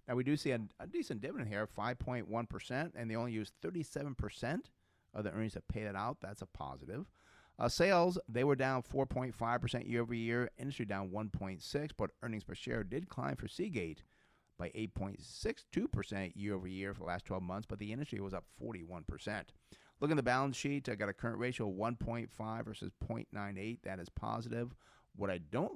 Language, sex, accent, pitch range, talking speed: English, male, American, 95-120 Hz, 190 wpm